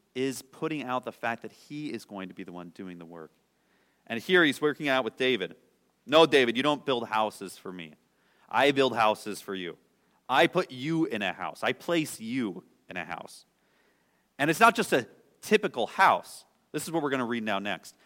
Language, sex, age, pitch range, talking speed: English, male, 30-49, 105-155 Hz, 215 wpm